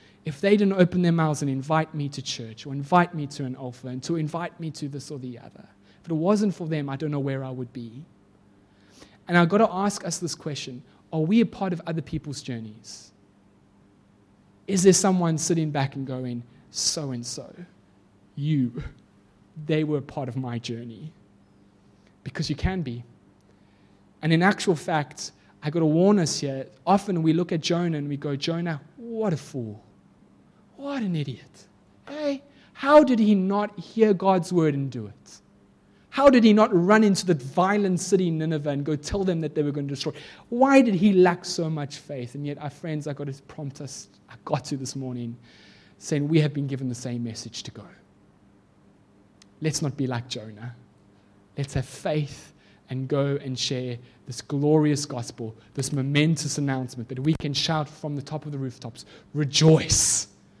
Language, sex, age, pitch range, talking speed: English, male, 20-39, 125-170 Hz, 190 wpm